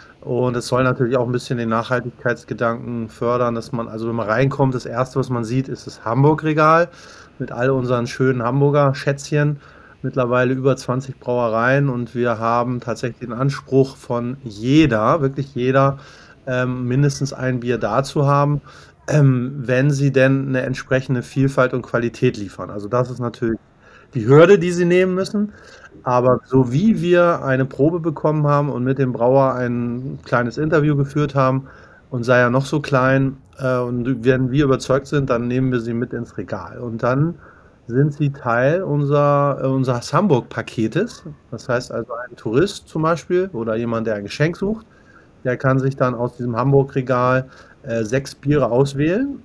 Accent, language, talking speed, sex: German, German, 165 wpm, male